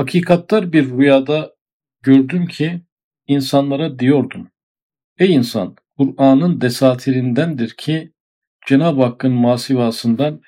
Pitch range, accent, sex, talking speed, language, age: 120-140 Hz, native, male, 85 wpm, Turkish, 50-69